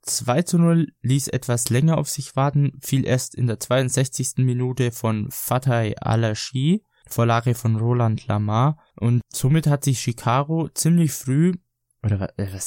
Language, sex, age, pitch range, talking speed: German, male, 20-39, 115-135 Hz, 145 wpm